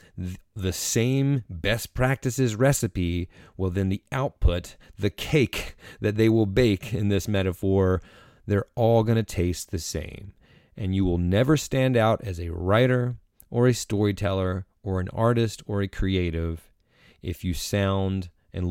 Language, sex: English, male